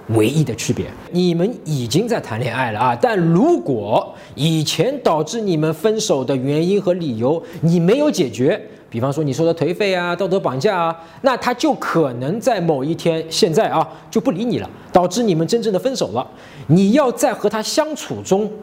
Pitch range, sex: 140-195 Hz, male